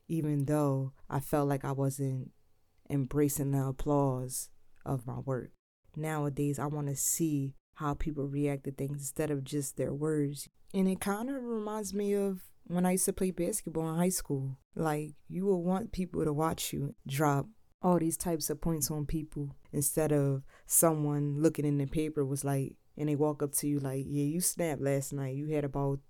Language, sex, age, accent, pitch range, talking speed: English, female, 20-39, American, 140-155 Hz, 190 wpm